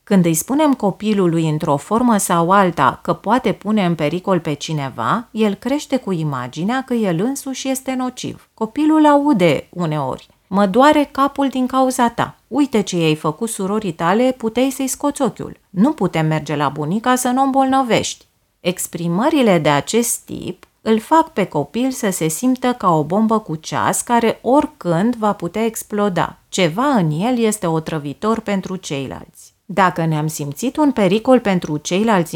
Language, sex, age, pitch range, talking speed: Romanian, female, 30-49, 165-250 Hz, 160 wpm